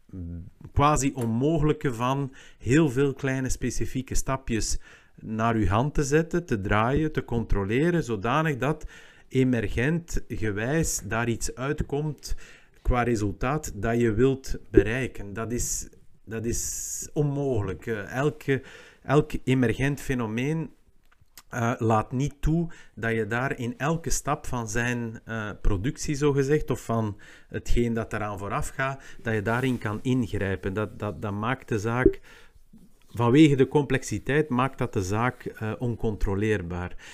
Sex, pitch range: male, 110-135 Hz